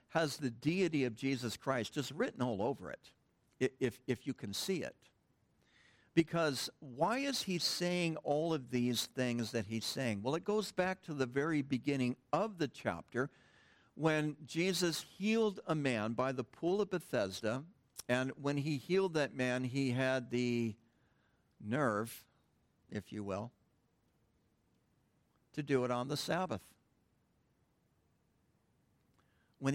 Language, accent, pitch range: English, American, 120-175 Hz